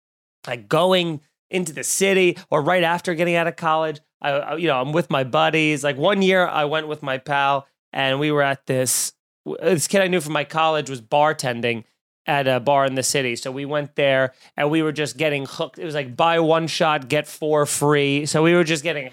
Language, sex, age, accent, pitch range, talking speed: English, male, 30-49, American, 150-180 Hz, 225 wpm